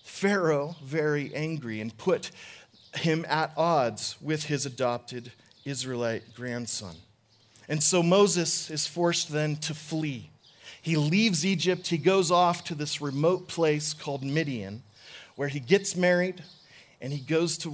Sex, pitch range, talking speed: male, 130-170 Hz, 140 wpm